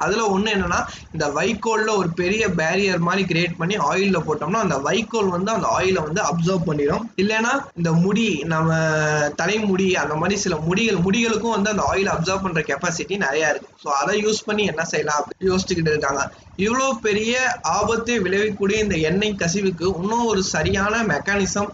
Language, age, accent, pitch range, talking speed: Tamil, 20-39, native, 160-210 Hz, 60 wpm